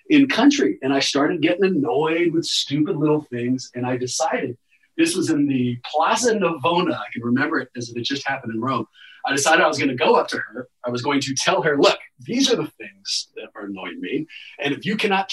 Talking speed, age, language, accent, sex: 235 wpm, 30-49, English, American, male